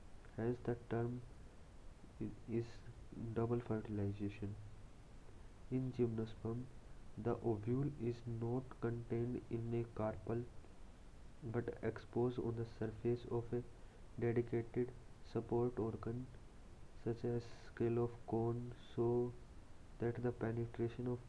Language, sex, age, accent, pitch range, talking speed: English, male, 30-49, Indian, 110-120 Hz, 100 wpm